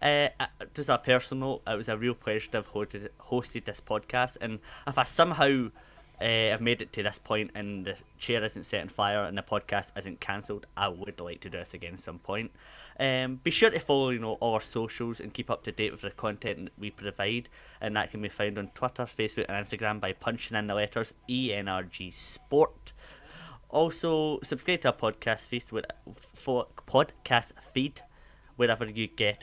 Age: 20-39